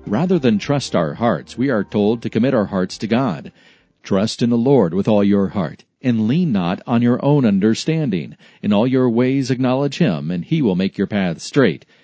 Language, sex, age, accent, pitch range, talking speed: English, male, 40-59, American, 105-130 Hz, 210 wpm